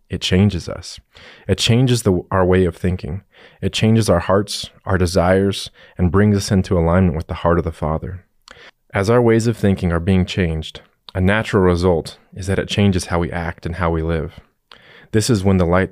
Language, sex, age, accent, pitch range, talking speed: English, male, 20-39, American, 85-100 Hz, 200 wpm